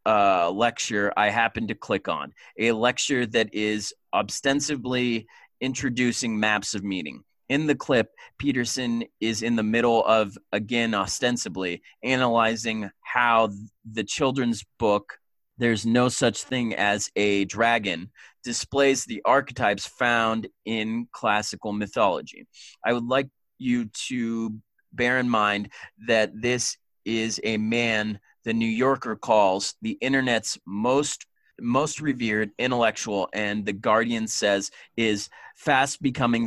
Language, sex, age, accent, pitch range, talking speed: English, male, 30-49, American, 105-120 Hz, 125 wpm